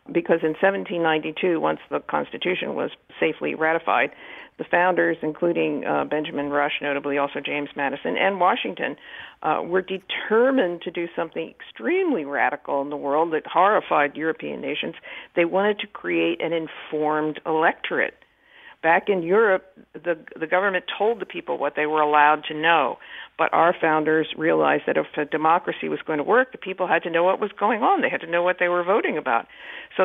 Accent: American